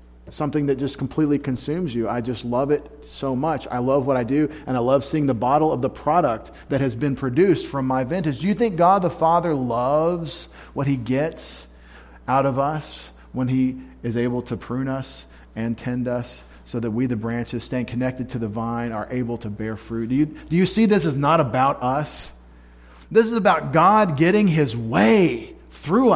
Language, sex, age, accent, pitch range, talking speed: English, male, 40-59, American, 110-145 Hz, 200 wpm